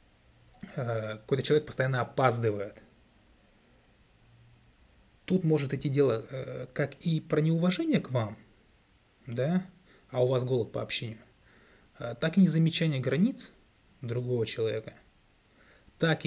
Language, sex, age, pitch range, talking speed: Russian, male, 20-39, 115-145 Hz, 105 wpm